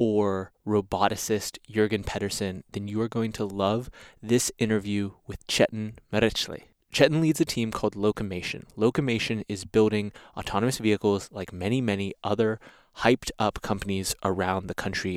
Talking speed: 140 wpm